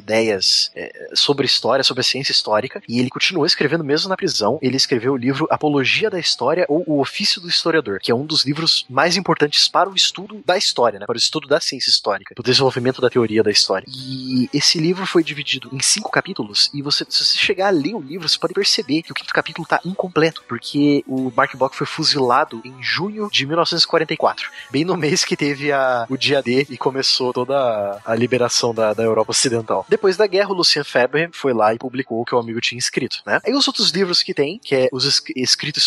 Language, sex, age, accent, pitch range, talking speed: Portuguese, male, 20-39, Brazilian, 120-160 Hz, 225 wpm